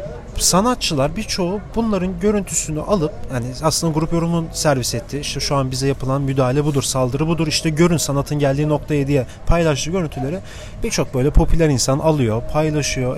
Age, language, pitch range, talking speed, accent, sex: 40-59, Turkish, 135-180 Hz, 155 wpm, native, male